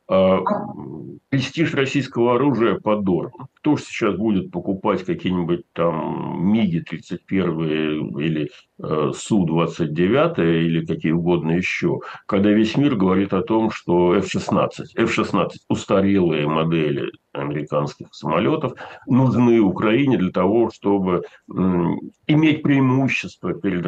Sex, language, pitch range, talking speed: male, Russian, 85-110 Hz, 100 wpm